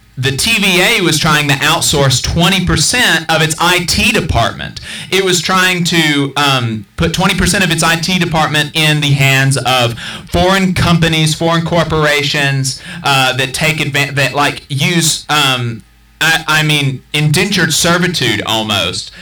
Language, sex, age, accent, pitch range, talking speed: English, male, 30-49, American, 145-185 Hz, 135 wpm